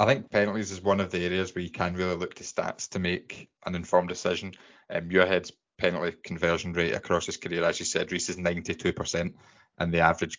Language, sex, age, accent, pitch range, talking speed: English, male, 20-39, British, 90-110 Hz, 215 wpm